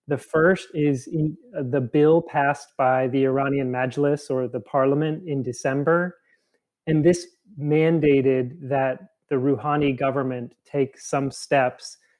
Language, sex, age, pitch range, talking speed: English, male, 30-49, 135-155 Hz, 125 wpm